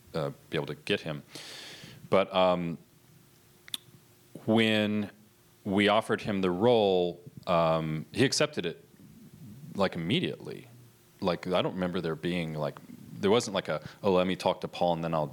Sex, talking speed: male, 155 wpm